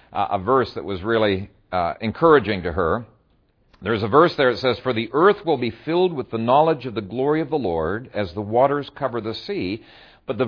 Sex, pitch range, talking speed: male, 120-185 Hz, 225 wpm